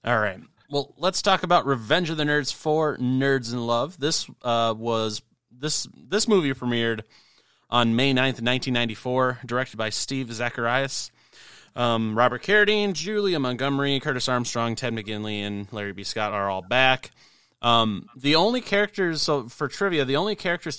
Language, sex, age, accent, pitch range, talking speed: English, male, 30-49, American, 110-140 Hz, 160 wpm